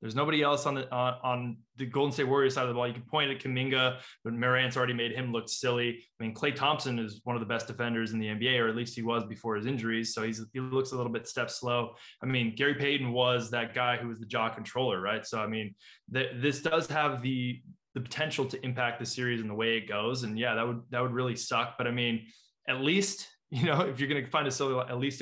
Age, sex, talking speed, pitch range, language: 20-39, male, 270 wpm, 115-135 Hz, English